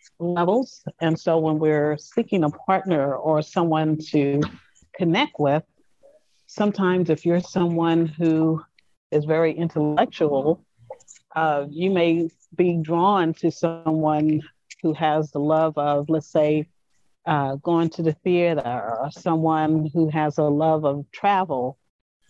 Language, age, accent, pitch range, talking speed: English, 40-59, American, 150-175 Hz, 130 wpm